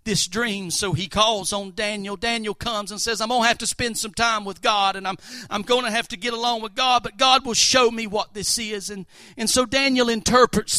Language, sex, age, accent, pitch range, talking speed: English, male, 50-69, American, 195-235 Hz, 250 wpm